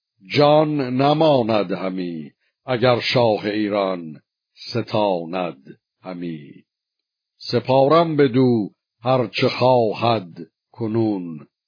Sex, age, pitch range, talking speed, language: male, 60-79, 105-130 Hz, 70 wpm, Persian